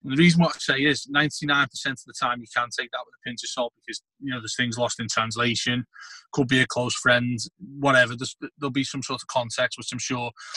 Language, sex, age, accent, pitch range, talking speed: English, male, 30-49, British, 120-140 Hz, 250 wpm